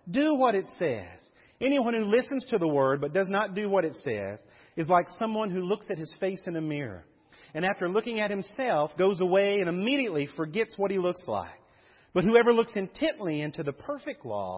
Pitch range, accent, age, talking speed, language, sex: 145-210 Hz, American, 40-59, 205 wpm, English, male